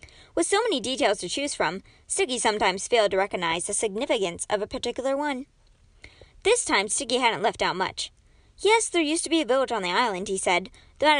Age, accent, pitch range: 20-39, American, 210-295 Hz